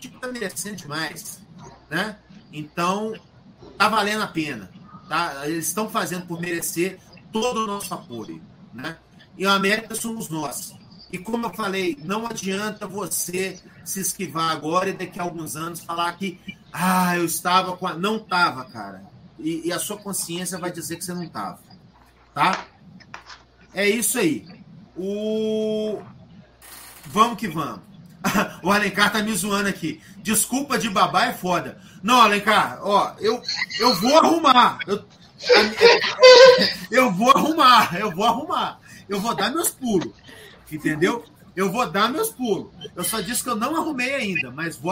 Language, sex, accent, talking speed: Portuguese, male, Brazilian, 155 wpm